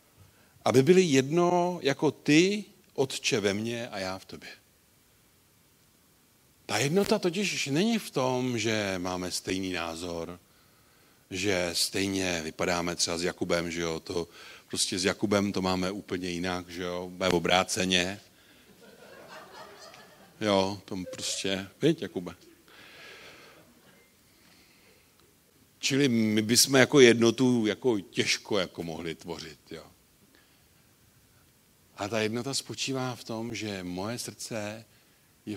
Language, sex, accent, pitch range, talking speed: Czech, male, native, 90-130 Hz, 115 wpm